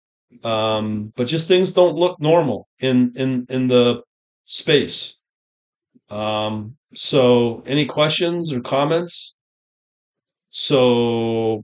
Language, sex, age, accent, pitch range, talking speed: English, male, 30-49, American, 120-150 Hz, 100 wpm